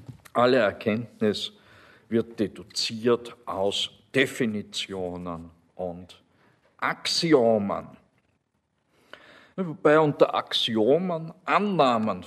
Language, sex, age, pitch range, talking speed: German, male, 50-69, 105-135 Hz, 60 wpm